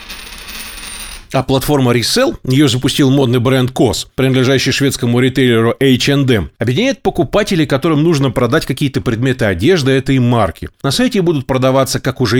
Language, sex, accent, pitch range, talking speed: Russian, male, native, 110-150 Hz, 135 wpm